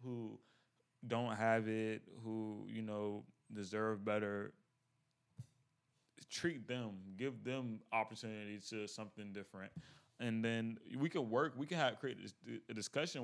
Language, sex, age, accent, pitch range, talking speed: English, male, 20-39, American, 100-125 Hz, 125 wpm